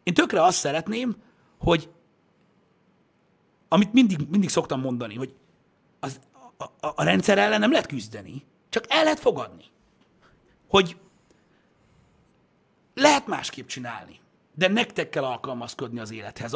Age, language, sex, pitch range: 60-79, Hungarian, male, 130-190 Hz